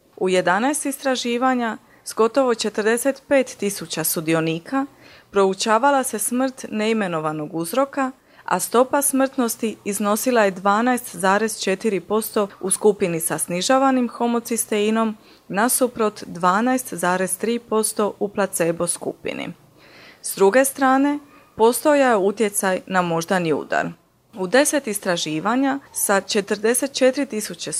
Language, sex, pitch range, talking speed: Croatian, female, 190-255 Hz, 95 wpm